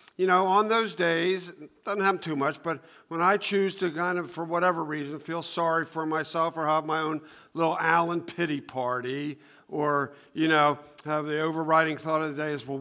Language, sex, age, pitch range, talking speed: English, male, 50-69, 155-200 Hz, 200 wpm